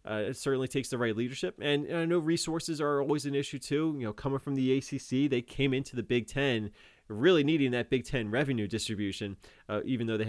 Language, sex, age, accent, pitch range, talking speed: English, male, 20-39, American, 105-135 Hz, 235 wpm